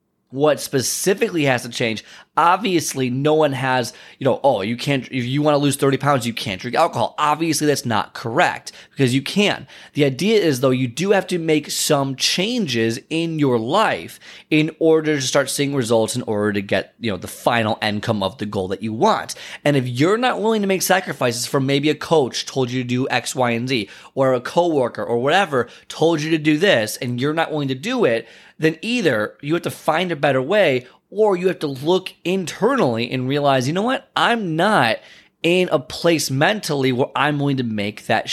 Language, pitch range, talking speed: English, 125-160 Hz, 215 wpm